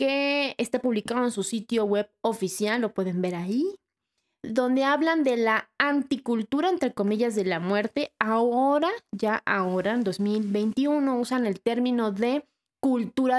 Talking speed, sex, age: 145 wpm, female, 20-39